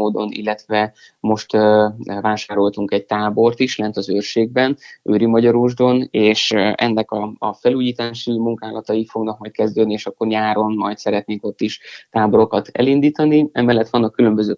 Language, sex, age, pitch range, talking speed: Hungarian, male, 20-39, 105-115 Hz, 130 wpm